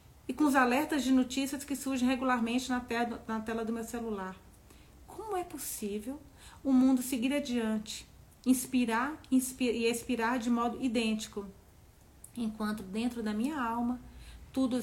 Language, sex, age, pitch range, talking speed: Portuguese, female, 40-59, 205-245 Hz, 135 wpm